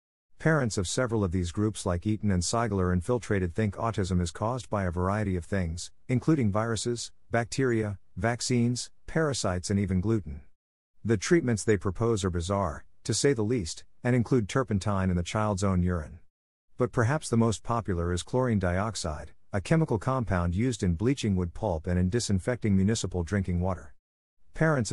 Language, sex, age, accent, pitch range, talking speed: English, male, 50-69, American, 90-115 Hz, 165 wpm